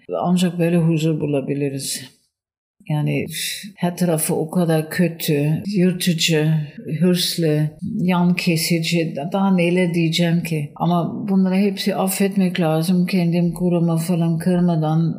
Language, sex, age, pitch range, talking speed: Turkish, female, 60-79, 165-200 Hz, 105 wpm